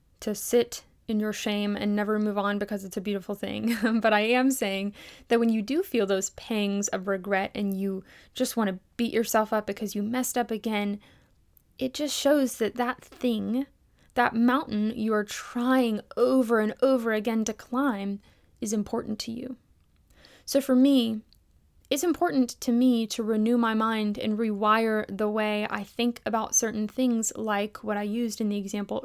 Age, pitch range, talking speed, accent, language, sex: 10-29, 210-250 Hz, 180 wpm, American, English, female